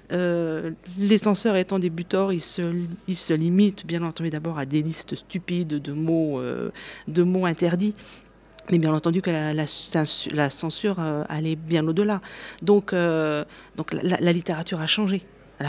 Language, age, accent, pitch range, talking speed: French, 40-59, French, 160-205 Hz, 170 wpm